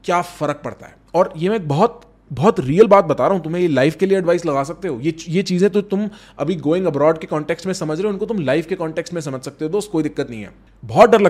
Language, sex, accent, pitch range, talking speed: English, male, Indian, 145-195 Hz, 200 wpm